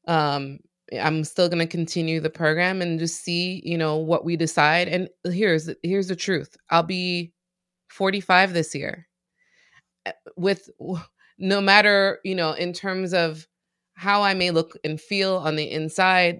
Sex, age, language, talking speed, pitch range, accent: female, 20-39, English, 155 wpm, 155-185 Hz, American